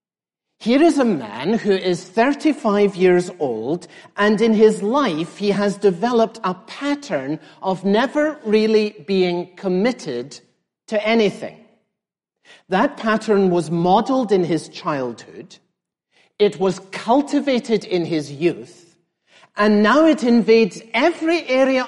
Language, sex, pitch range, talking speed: English, male, 175-235 Hz, 120 wpm